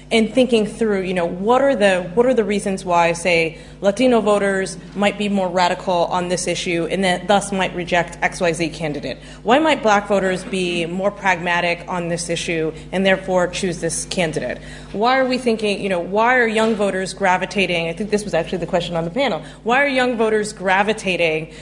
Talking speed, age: 195 wpm, 30-49